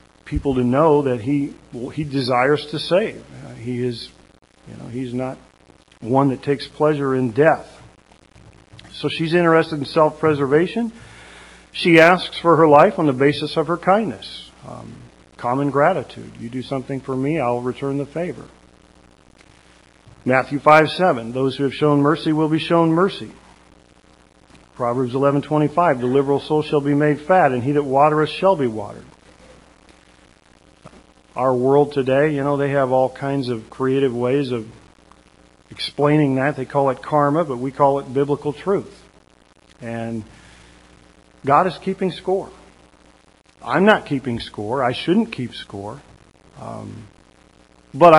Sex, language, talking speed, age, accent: male, English, 150 wpm, 50-69, American